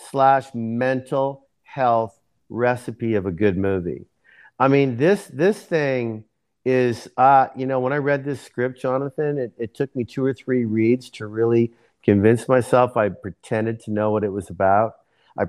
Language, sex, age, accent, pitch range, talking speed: English, male, 50-69, American, 105-125 Hz, 170 wpm